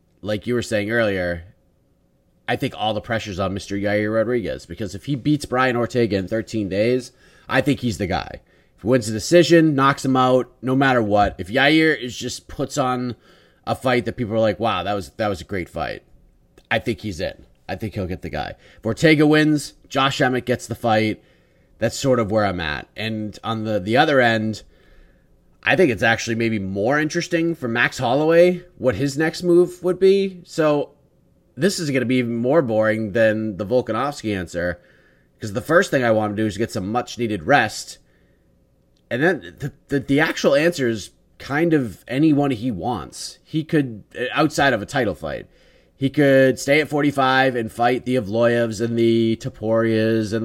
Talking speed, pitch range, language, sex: 195 wpm, 105-135 Hz, English, male